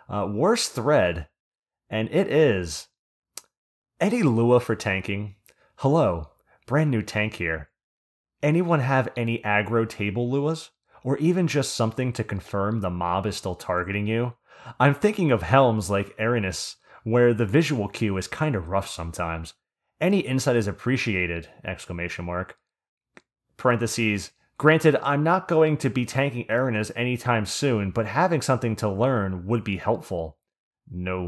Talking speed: 140 wpm